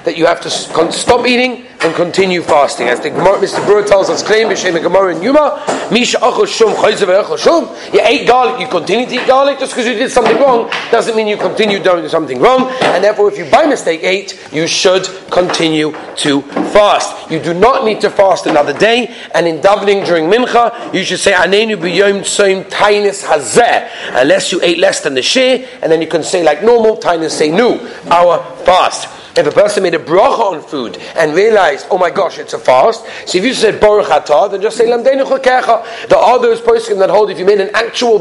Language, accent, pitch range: English, British, 175-245 Hz